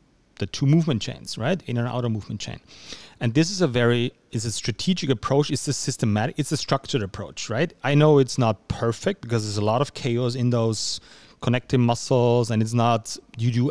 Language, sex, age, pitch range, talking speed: German, male, 30-49, 115-140 Hz, 205 wpm